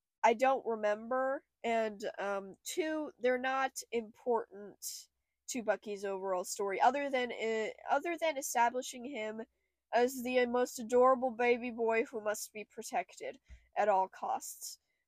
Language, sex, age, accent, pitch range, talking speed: English, female, 10-29, American, 220-280 Hz, 135 wpm